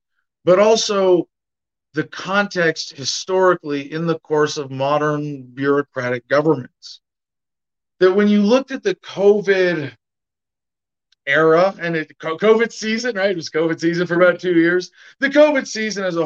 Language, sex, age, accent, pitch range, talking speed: English, male, 40-59, American, 135-185 Hz, 140 wpm